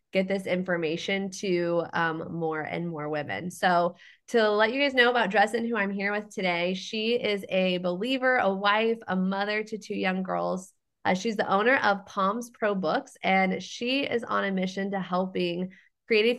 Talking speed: 185 wpm